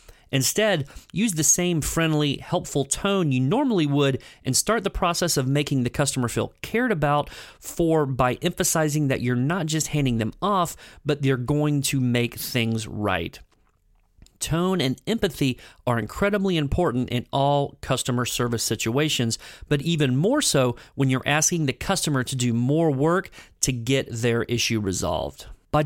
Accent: American